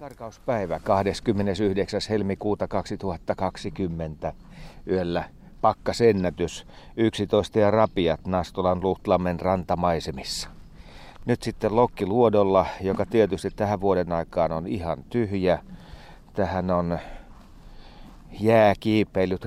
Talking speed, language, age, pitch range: 85 wpm, Finnish, 40-59, 85-105 Hz